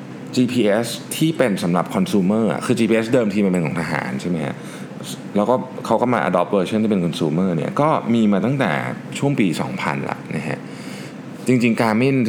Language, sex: Thai, male